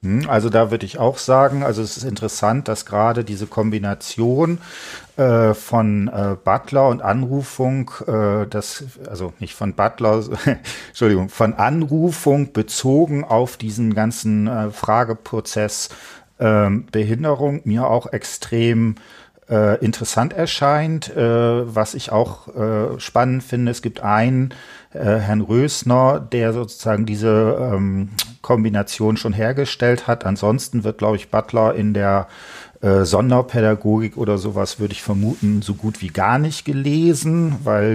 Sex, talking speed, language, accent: male, 135 wpm, German, German